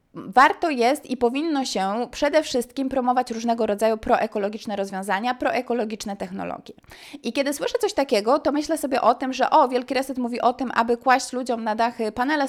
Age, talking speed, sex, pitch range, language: 20-39, 180 wpm, female, 210-270 Hz, Polish